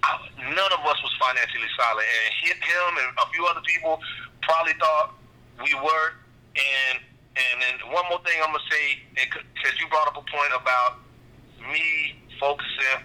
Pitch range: 125-165 Hz